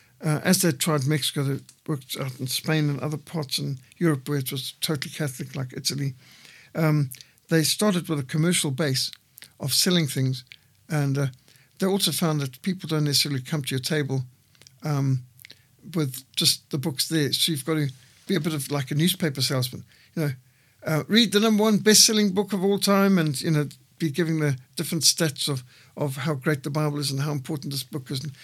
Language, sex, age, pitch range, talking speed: English, male, 60-79, 135-165 Hz, 205 wpm